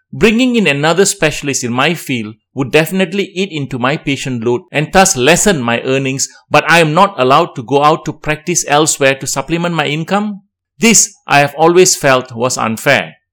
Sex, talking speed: male, 185 wpm